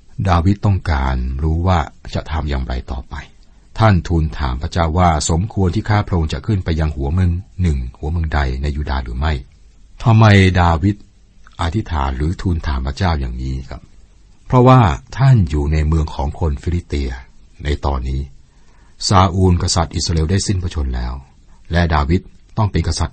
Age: 60-79